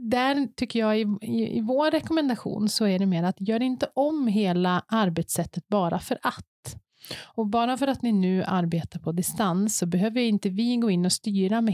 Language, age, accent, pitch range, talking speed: Swedish, 30-49, native, 180-230 Hz, 200 wpm